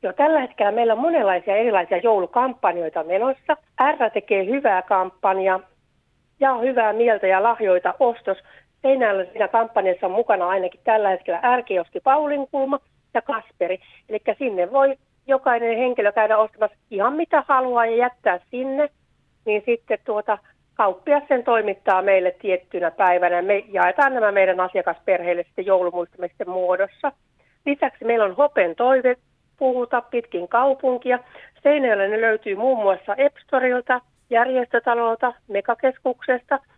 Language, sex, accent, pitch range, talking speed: Finnish, female, native, 195-260 Hz, 130 wpm